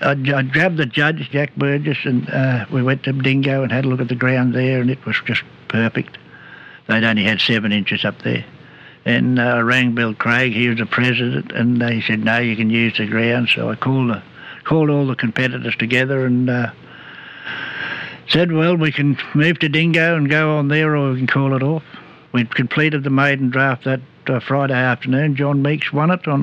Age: 60-79